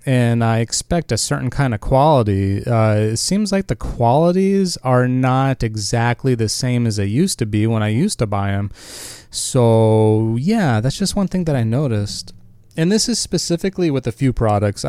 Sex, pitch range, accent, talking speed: male, 110-135 Hz, American, 190 wpm